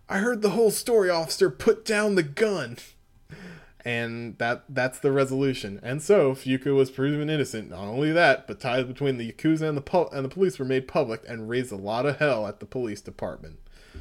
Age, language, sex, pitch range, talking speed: 20-39, English, male, 115-150 Hz, 200 wpm